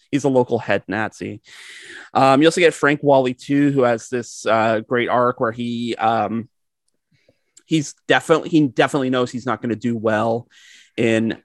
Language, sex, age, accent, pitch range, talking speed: English, male, 30-49, American, 105-125 Hz, 175 wpm